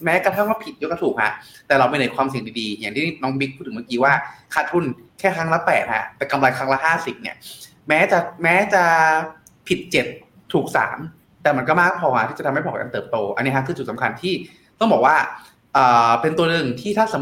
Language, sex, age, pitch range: Thai, male, 20-39, 130-180 Hz